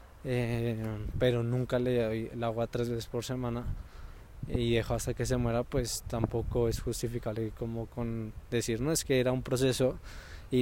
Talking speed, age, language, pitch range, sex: 175 wpm, 20-39, Spanish, 115-135 Hz, male